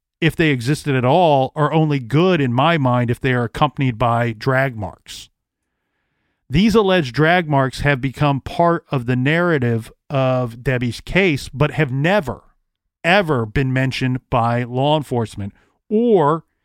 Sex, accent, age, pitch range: male, American, 40-59, 125-160 Hz